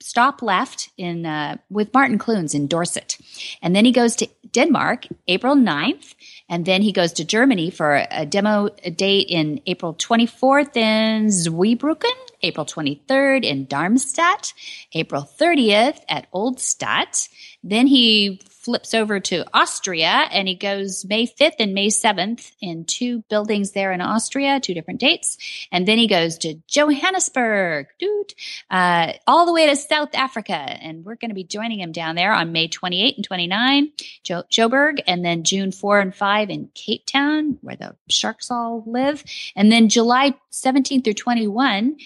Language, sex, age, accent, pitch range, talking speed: English, female, 30-49, American, 180-265 Hz, 160 wpm